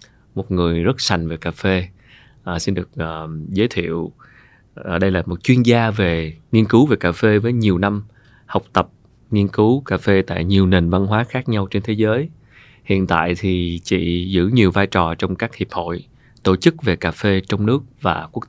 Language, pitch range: Vietnamese, 95-120 Hz